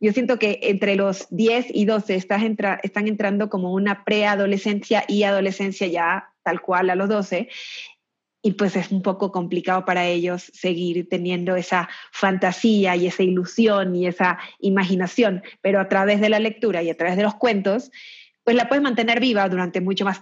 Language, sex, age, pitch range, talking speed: Spanish, female, 30-49, 185-215 Hz, 180 wpm